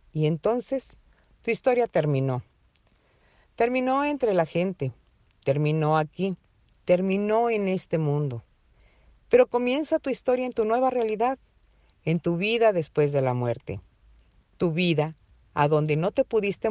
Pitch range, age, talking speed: 145-210 Hz, 50-69, 135 wpm